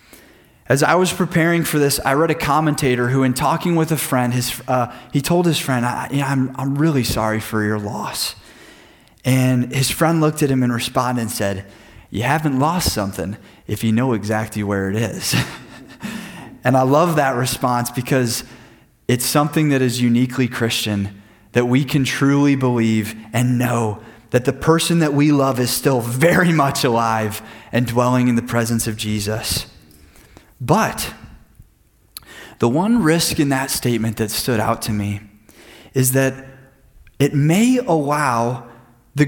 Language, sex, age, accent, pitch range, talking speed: English, male, 20-39, American, 110-145 Hz, 160 wpm